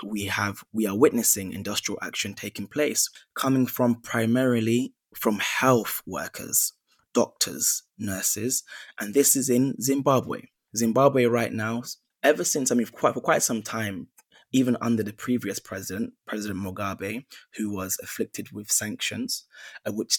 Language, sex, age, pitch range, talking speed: English, male, 20-39, 105-120 Hz, 140 wpm